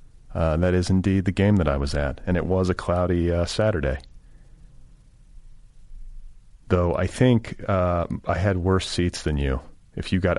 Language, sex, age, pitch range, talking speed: English, male, 40-59, 80-105 Hz, 175 wpm